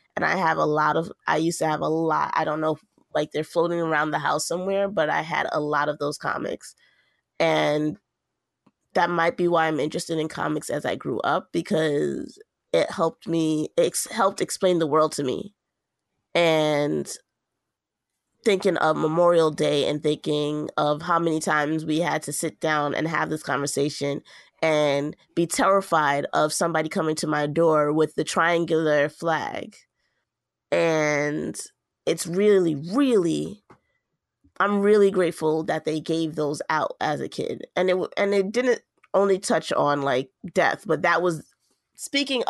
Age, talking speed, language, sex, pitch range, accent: 20-39, 165 wpm, English, female, 150-175 Hz, American